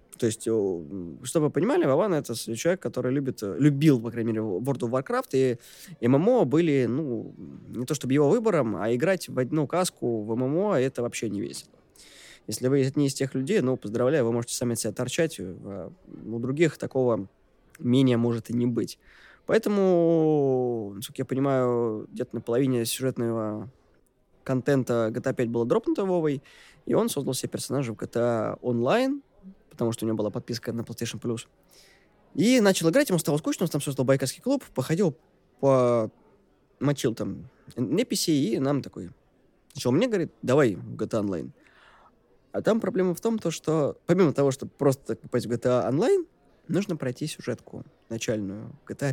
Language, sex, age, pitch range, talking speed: Russian, male, 20-39, 115-150 Hz, 160 wpm